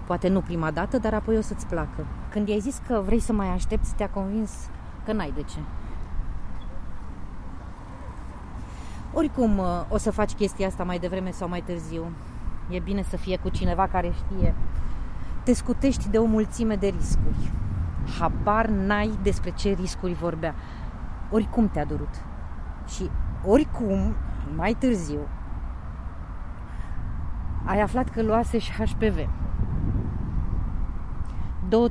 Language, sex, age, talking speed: Romanian, female, 30-49, 130 wpm